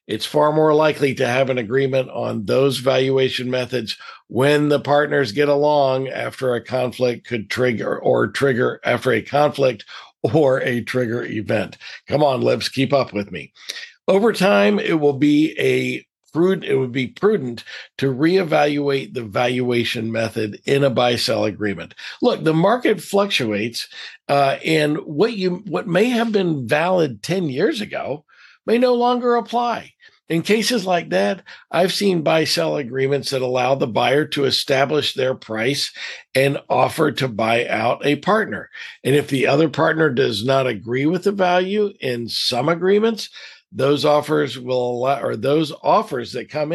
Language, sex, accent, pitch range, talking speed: English, male, American, 125-170 Hz, 160 wpm